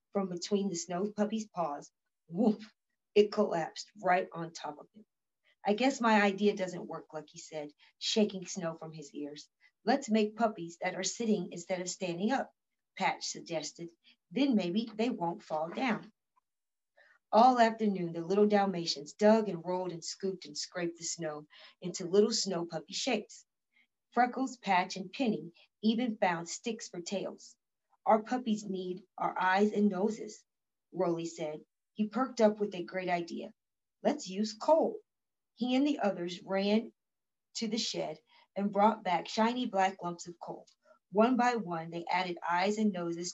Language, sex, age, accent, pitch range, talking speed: English, female, 40-59, American, 175-220 Hz, 160 wpm